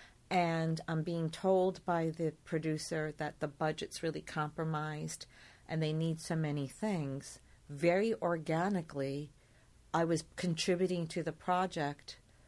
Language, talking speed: English, 125 wpm